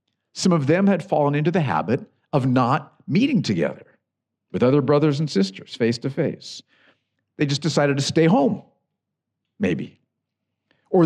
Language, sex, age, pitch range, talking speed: English, male, 50-69, 150-200 Hz, 140 wpm